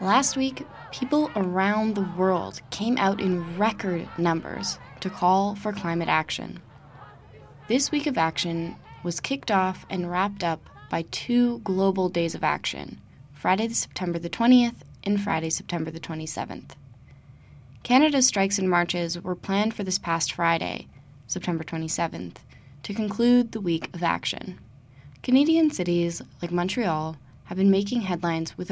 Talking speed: 140 wpm